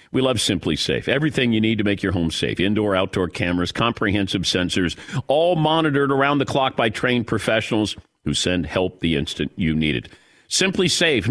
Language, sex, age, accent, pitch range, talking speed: English, male, 50-69, American, 100-140 Hz, 185 wpm